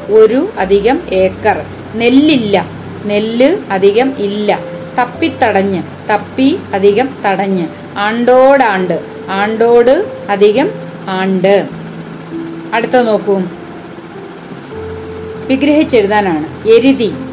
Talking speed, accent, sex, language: 75 wpm, native, female, Malayalam